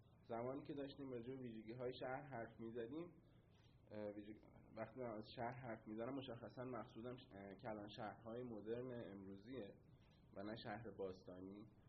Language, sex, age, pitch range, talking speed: Persian, male, 20-39, 105-140 Hz, 125 wpm